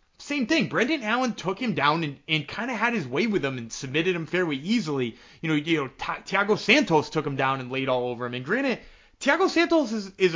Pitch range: 145-215 Hz